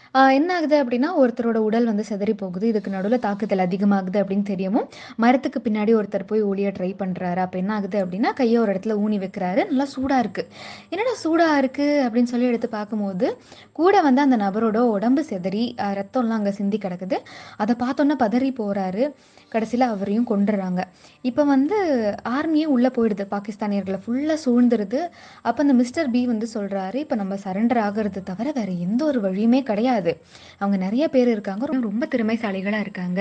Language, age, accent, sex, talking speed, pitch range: Tamil, 20-39, native, female, 150 wpm, 195-255 Hz